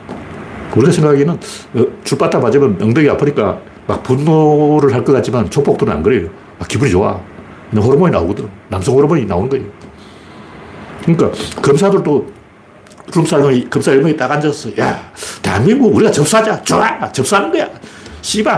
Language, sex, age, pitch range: Korean, male, 60-79, 140-205 Hz